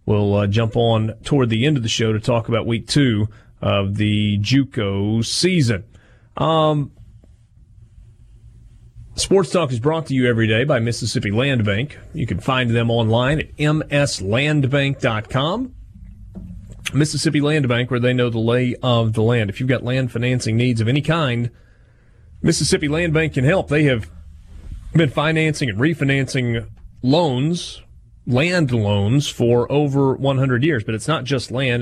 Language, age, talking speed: English, 30-49, 155 wpm